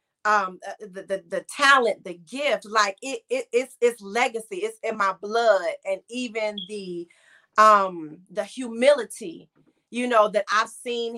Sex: female